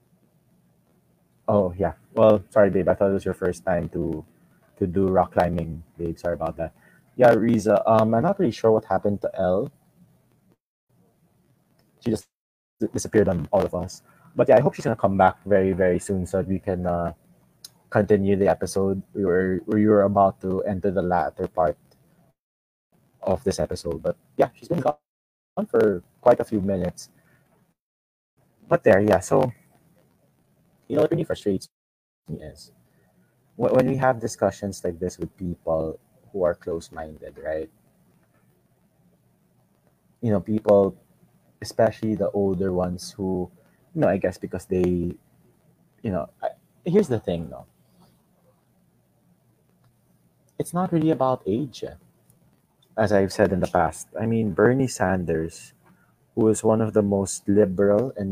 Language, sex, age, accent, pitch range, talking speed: English, male, 20-39, Filipino, 90-110 Hz, 150 wpm